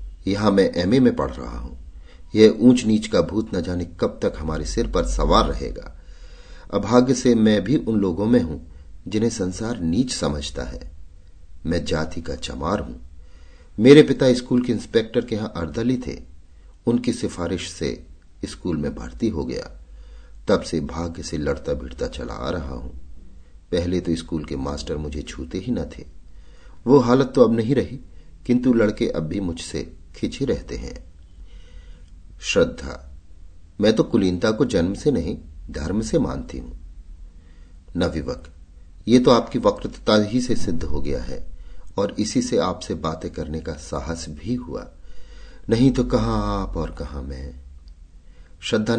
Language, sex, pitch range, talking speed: Hindi, male, 70-100 Hz, 160 wpm